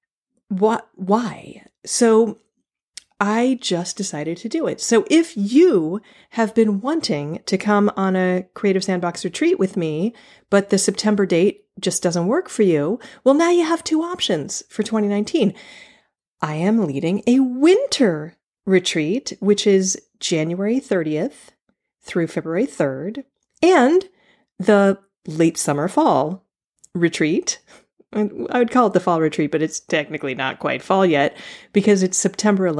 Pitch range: 180-245 Hz